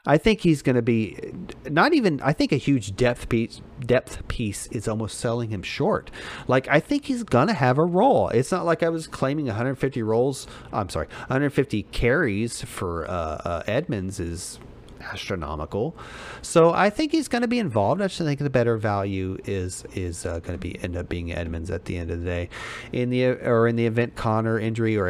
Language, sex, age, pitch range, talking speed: English, male, 40-59, 100-135 Hz, 210 wpm